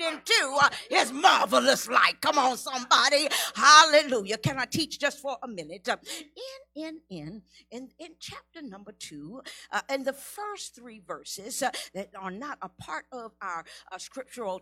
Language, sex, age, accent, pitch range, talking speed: English, female, 50-69, American, 235-335 Hz, 160 wpm